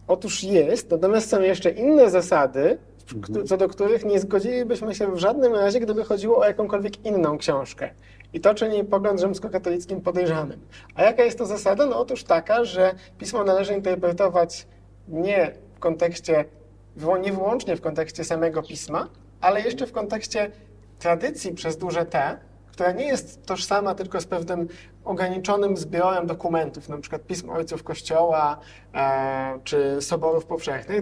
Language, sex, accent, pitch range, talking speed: Polish, male, native, 165-210 Hz, 145 wpm